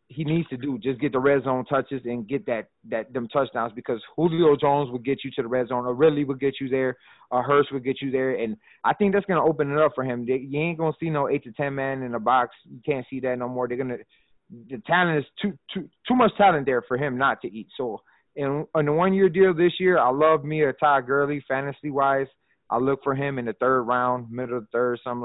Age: 30-49